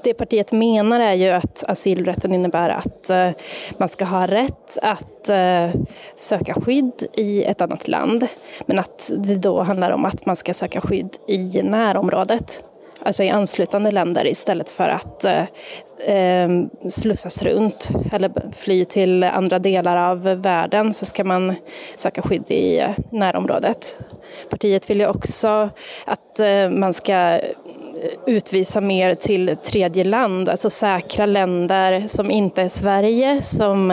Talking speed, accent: 135 wpm, Swedish